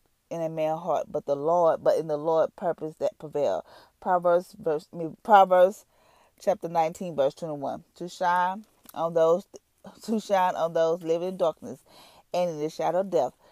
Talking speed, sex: 180 wpm, female